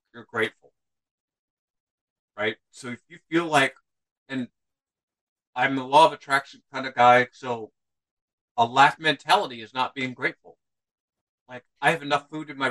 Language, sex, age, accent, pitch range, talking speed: English, male, 50-69, American, 110-140 Hz, 150 wpm